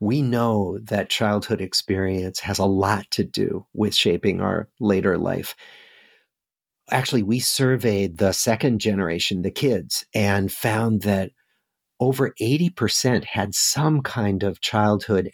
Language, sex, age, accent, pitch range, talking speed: English, male, 50-69, American, 100-135 Hz, 130 wpm